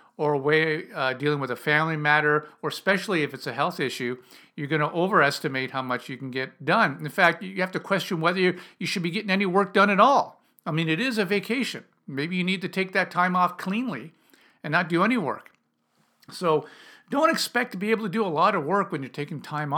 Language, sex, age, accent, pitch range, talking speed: English, male, 50-69, American, 145-200 Hz, 240 wpm